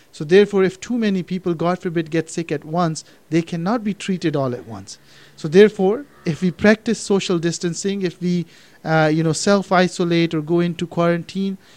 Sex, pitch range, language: male, 155-175 Hz, English